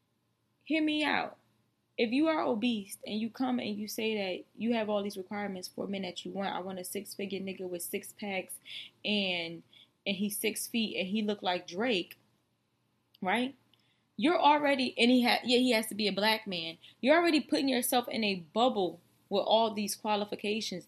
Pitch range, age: 200-270 Hz, 20-39